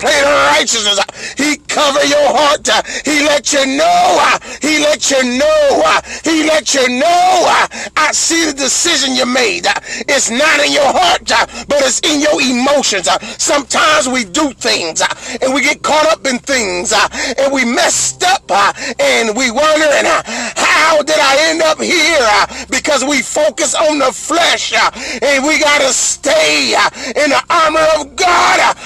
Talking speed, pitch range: 160 wpm, 265-315 Hz